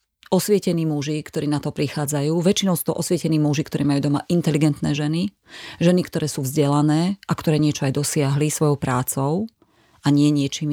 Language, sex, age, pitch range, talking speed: Slovak, female, 30-49, 145-170 Hz, 175 wpm